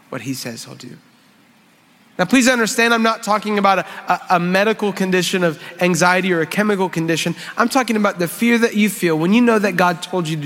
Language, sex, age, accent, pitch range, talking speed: English, male, 30-49, American, 155-200 Hz, 225 wpm